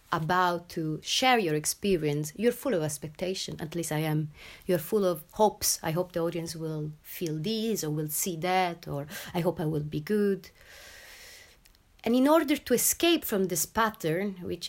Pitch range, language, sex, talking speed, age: 165-210 Hz, English, female, 180 wpm, 30-49